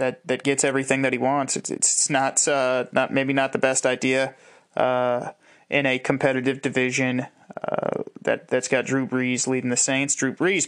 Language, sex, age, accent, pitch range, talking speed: English, male, 20-39, American, 125-140 Hz, 185 wpm